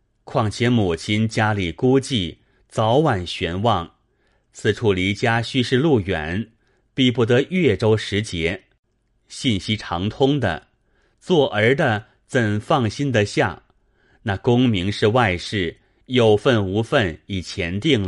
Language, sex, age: Chinese, male, 30-49